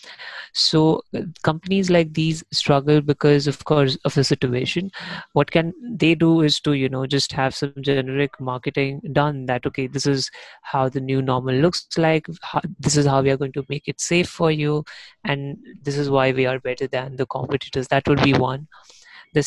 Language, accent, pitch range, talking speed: Hindi, native, 135-155 Hz, 190 wpm